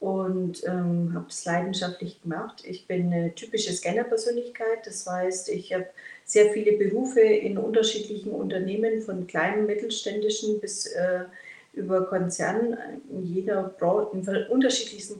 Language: German